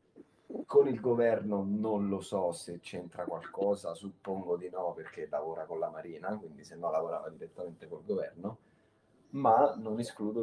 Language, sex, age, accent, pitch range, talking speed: Italian, male, 20-39, native, 90-115 Hz, 155 wpm